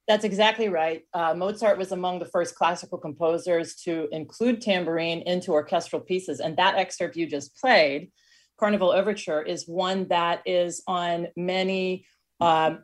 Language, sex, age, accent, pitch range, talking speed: English, female, 40-59, American, 150-185 Hz, 150 wpm